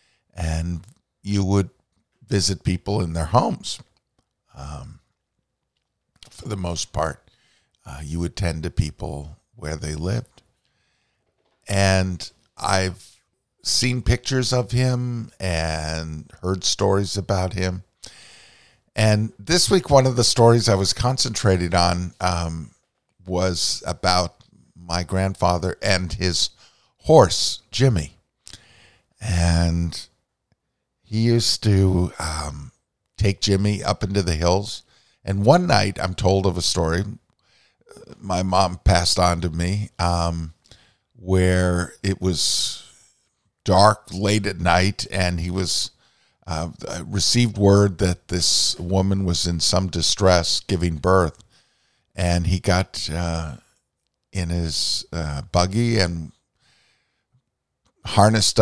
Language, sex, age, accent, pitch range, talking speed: English, male, 50-69, American, 85-105 Hz, 115 wpm